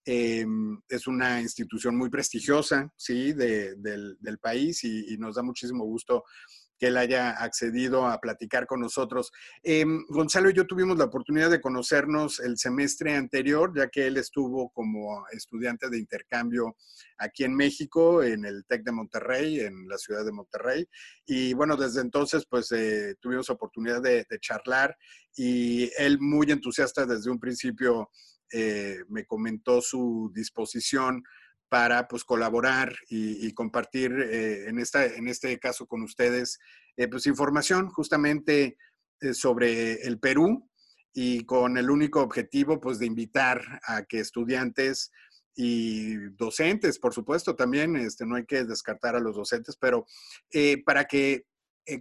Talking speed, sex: 155 wpm, male